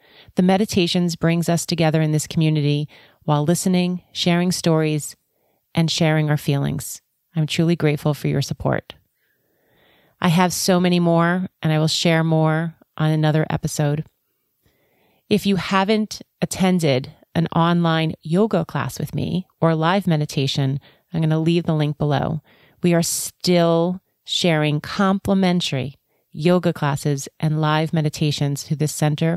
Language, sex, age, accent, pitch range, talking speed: English, female, 30-49, American, 150-175 Hz, 140 wpm